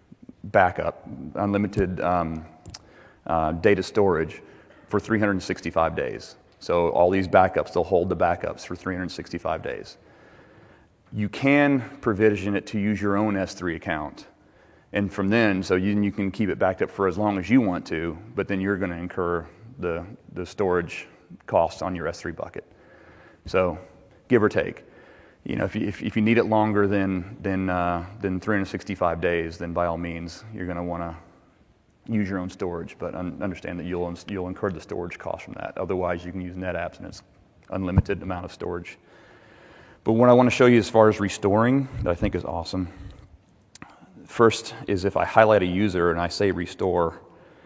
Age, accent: 30-49, American